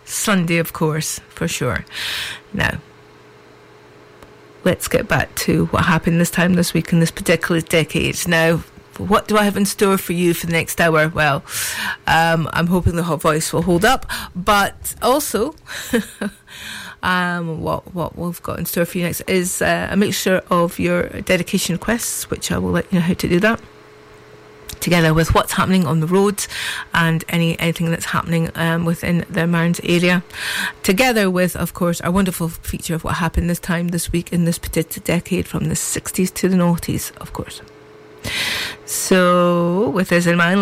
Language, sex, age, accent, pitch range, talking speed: English, female, 40-59, British, 165-195 Hz, 180 wpm